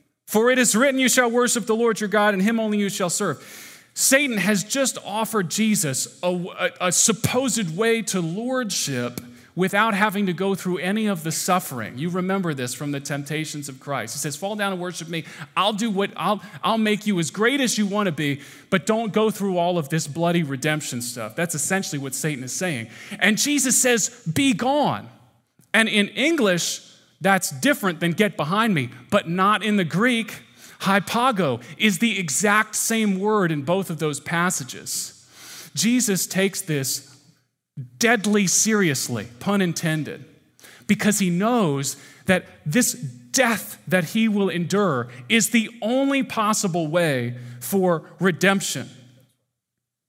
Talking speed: 165 wpm